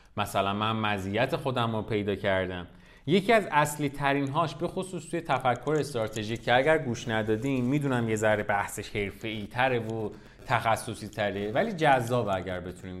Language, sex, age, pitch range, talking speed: Persian, male, 30-49, 115-175 Hz, 150 wpm